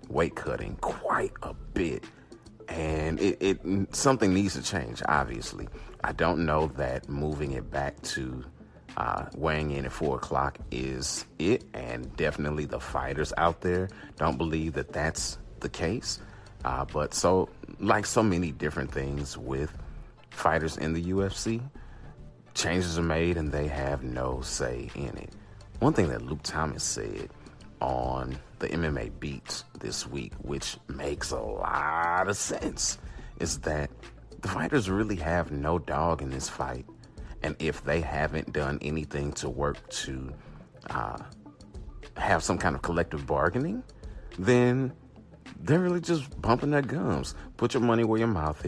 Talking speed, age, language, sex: 150 wpm, 30-49, English, male